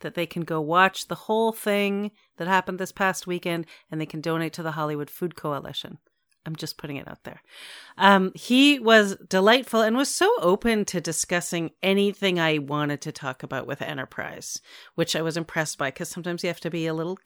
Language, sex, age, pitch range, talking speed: English, female, 40-59, 155-225 Hz, 205 wpm